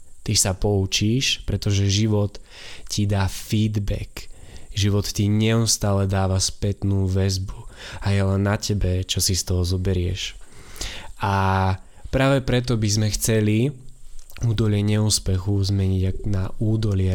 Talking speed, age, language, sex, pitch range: 120 wpm, 20-39, Slovak, male, 95-115 Hz